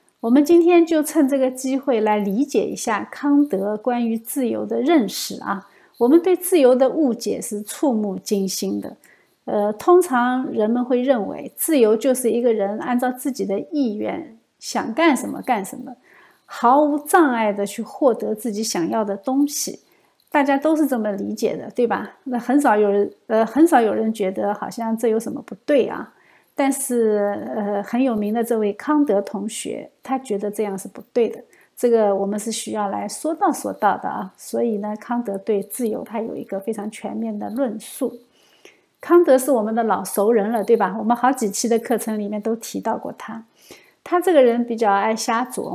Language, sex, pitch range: Chinese, female, 215-275 Hz